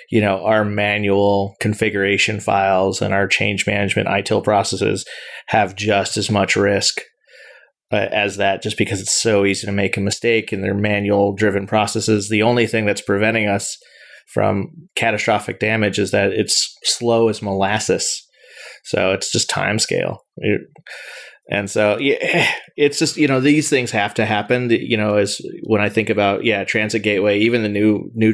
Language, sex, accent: English, male, American